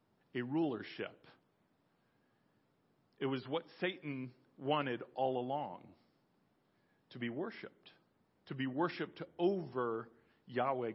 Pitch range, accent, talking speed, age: 180-265 Hz, American, 95 wpm, 50-69